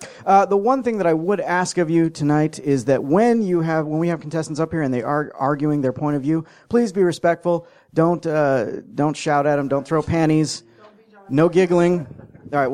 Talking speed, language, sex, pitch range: 210 wpm, English, male, 135-175 Hz